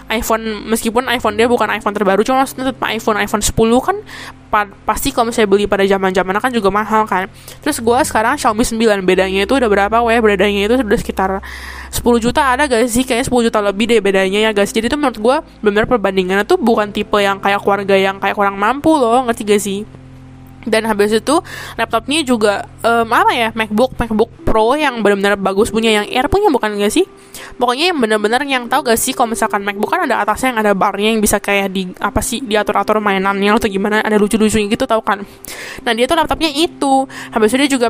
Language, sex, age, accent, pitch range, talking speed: Indonesian, female, 10-29, native, 205-250 Hz, 210 wpm